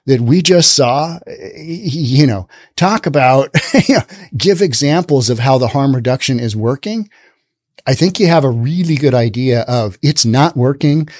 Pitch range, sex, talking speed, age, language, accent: 125-185 Hz, male, 155 wpm, 40-59, English, American